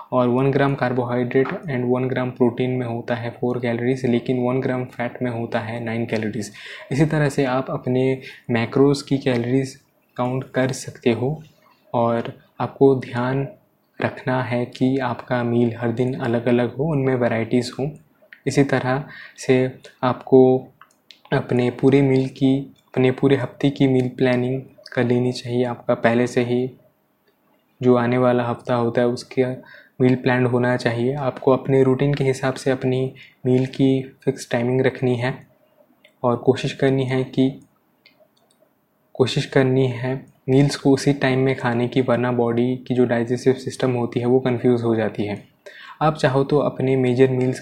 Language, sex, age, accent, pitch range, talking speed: Hindi, male, 20-39, native, 120-135 Hz, 165 wpm